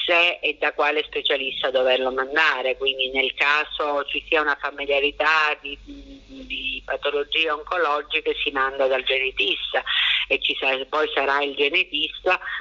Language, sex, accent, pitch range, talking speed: Italian, female, native, 135-155 Hz, 135 wpm